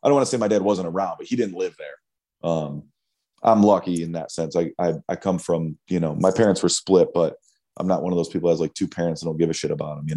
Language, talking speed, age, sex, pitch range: English, 300 wpm, 30-49, male, 80-100 Hz